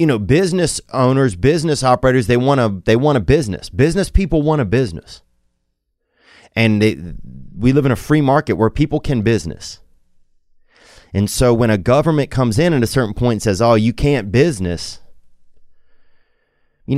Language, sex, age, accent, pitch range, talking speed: English, male, 30-49, American, 90-130 Hz, 170 wpm